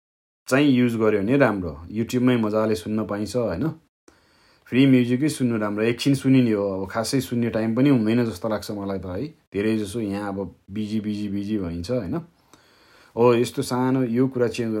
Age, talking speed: 30-49, 55 wpm